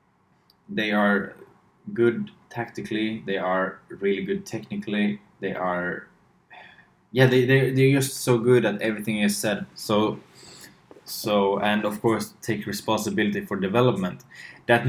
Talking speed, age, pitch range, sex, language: 130 wpm, 20-39, 95-145 Hz, male, English